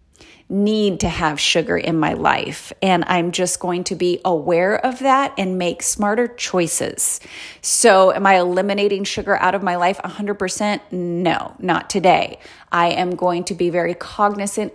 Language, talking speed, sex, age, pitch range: English, 165 wpm, female, 30-49, 180-250 Hz